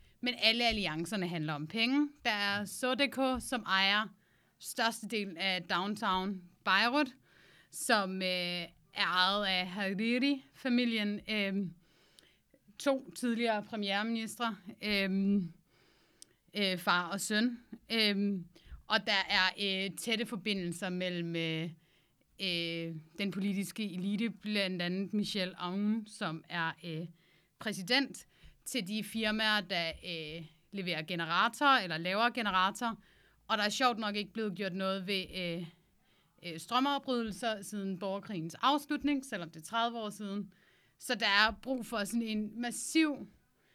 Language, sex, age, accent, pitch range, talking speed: Danish, female, 30-49, native, 175-225 Hz, 125 wpm